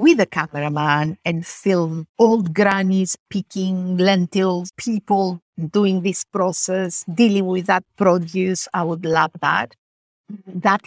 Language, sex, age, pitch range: English, female, 50-69, 160-190 Hz